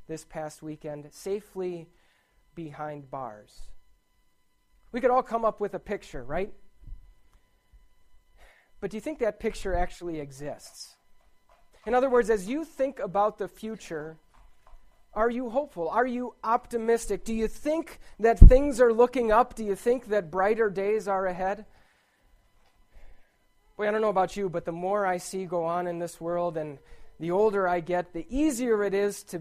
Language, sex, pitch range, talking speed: English, male, 170-220 Hz, 165 wpm